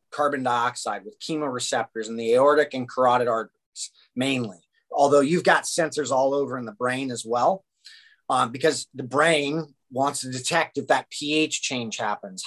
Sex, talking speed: male, 165 wpm